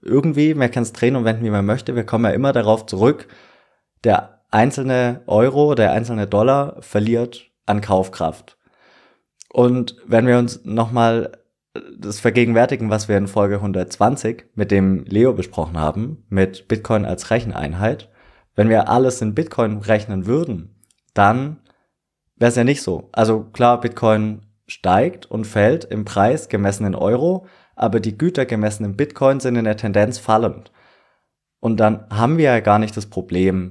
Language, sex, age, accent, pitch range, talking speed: German, male, 20-39, German, 105-125 Hz, 160 wpm